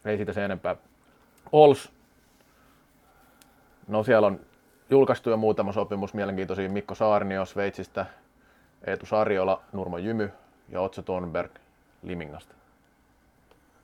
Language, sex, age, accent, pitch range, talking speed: Finnish, male, 30-49, native, 90-105 Hz, 100 wpm